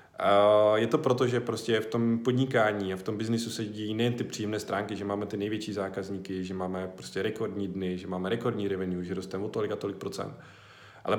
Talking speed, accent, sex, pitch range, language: 215 wpm, native, male, 105-120 Hz, Czech